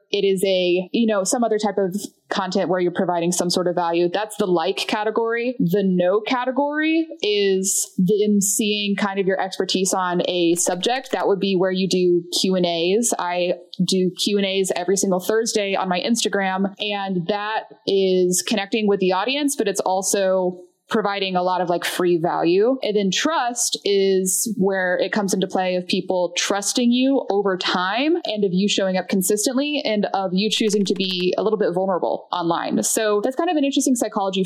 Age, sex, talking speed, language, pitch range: 20-39, female, 190 wpm, English, 185-220 Hz